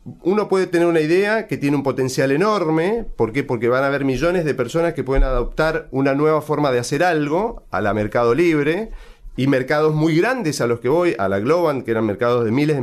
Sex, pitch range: male, 130-175 Hz